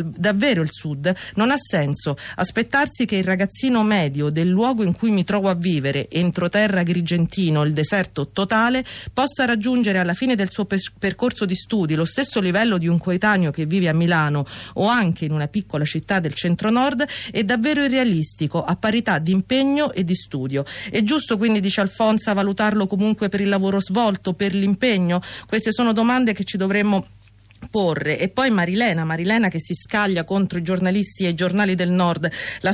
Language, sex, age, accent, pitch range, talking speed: Italian, female, 40-59, native, 175-220 Hz, 180 wpm